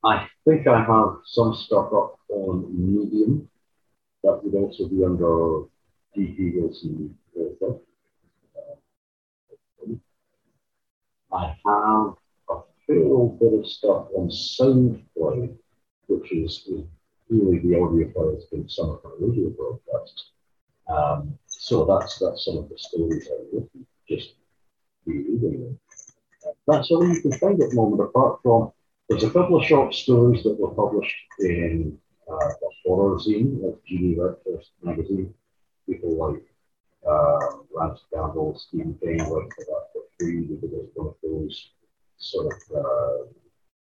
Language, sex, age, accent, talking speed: English, male, 50-69, British, 140 wpm